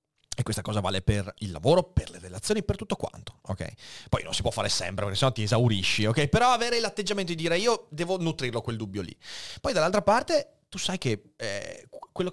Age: 30-49